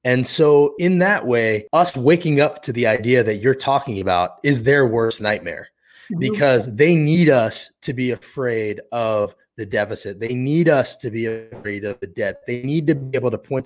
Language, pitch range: English, 115-150 Hz